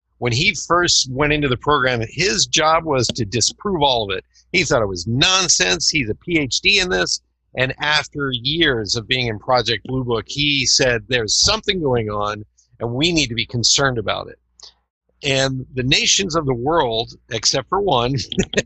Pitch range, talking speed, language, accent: 115-145 Hz, 185 wpm, English, American